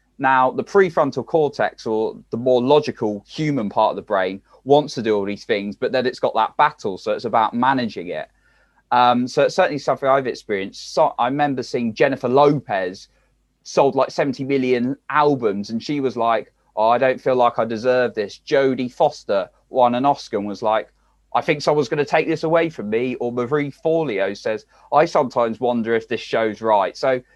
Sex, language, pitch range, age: male, English, 115-145 Hz, 20-39